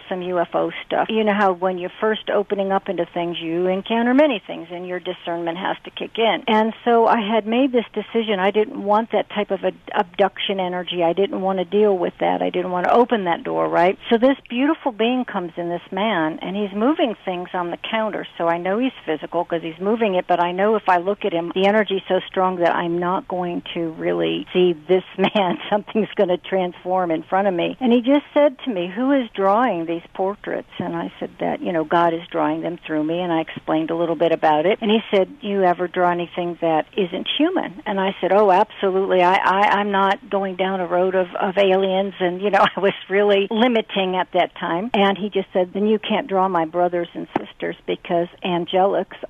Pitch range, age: 175-210 Hz, 60-79